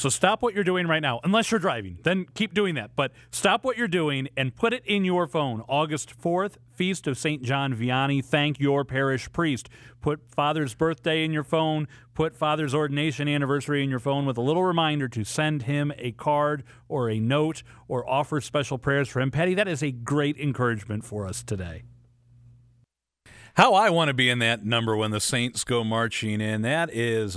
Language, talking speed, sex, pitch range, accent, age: English, 200 wpm, male, 110-150 Hz, American, 40-59